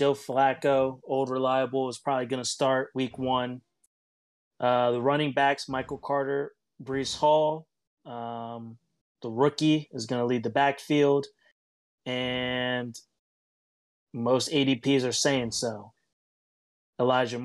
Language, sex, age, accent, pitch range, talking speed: English, male, 30-49, American, 120-140 Hz, 120 wpm